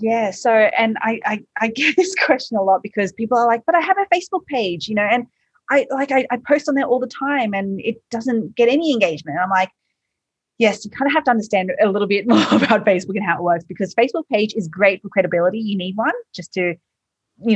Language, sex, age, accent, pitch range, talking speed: English, female, 20-39, Australian, 170-230 Hz, 245 wpm